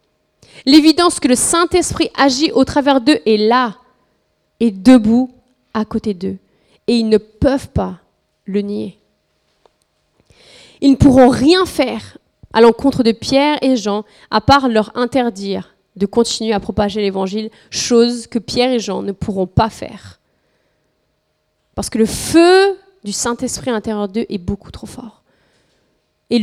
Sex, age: female, 30-49